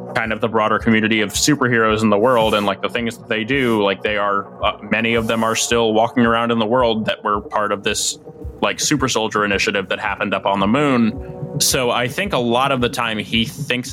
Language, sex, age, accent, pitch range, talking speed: English, male, 20-39, American, 105-125 Hz, 240 wpm